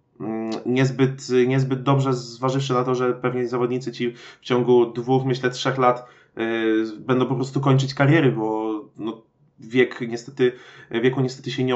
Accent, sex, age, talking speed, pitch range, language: native, male, 20-39, 155 wpm, 115-130 Hz, Polish